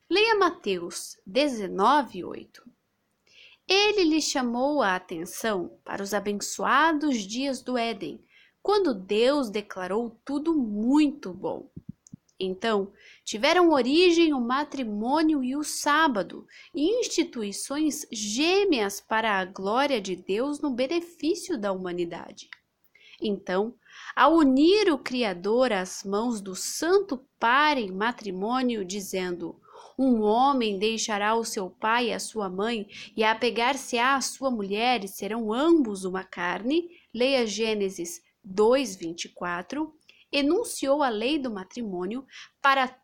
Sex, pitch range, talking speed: female, 205-305 Hz, 115 wpm